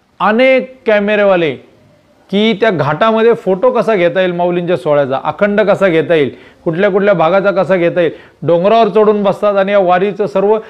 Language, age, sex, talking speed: Marathi, 30-49, male, 155 wpm